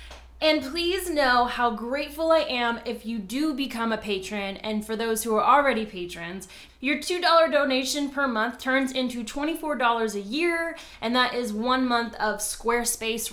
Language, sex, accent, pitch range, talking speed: English, female, American, 220-275 Hz, 165 wpm